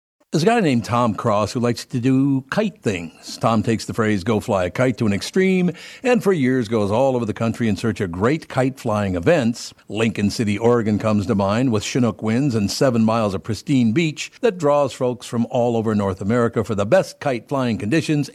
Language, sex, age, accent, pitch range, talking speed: English, male, 60-79, American, 105-135 Hz, 220 wpm